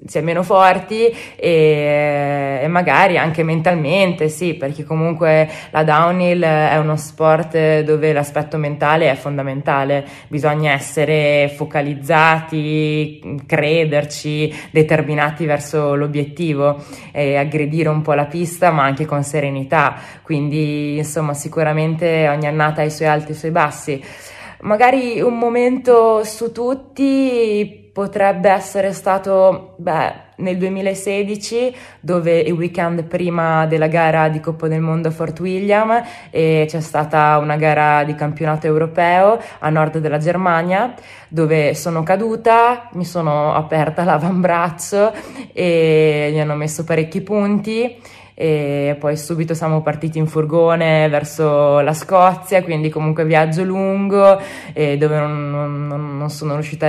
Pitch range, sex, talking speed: 150-180 Hz, female, 130 wpm